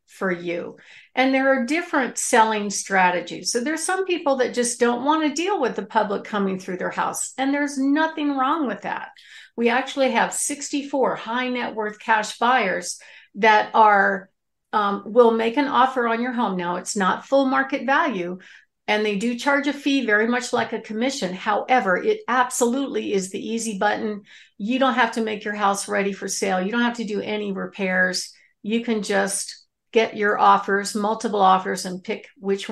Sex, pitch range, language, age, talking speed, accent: female, 205-260 Hz, English, 50-69, 185 wpm, American